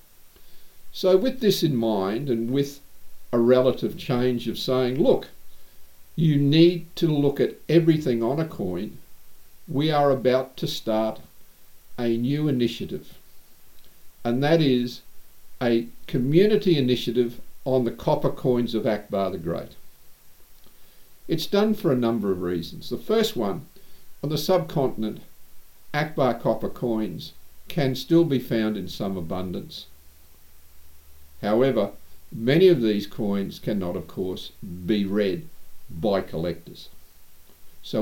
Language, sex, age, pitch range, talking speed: English, male, 50-69, 95-140 Hz, 125 wpm